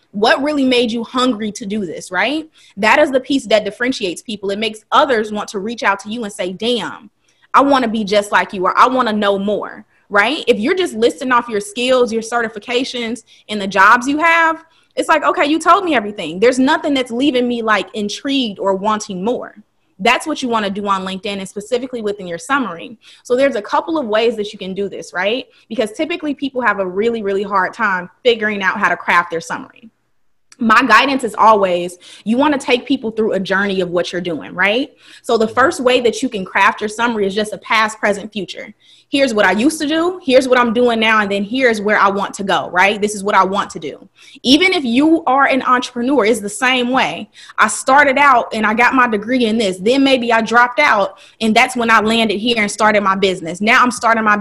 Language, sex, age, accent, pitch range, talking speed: English, female, 20-39, American, 205-255 Hz, 235 wpm